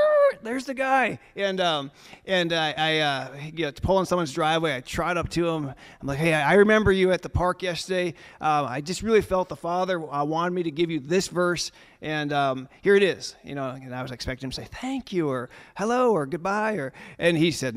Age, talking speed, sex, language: 30-49, 235 wpm, male, English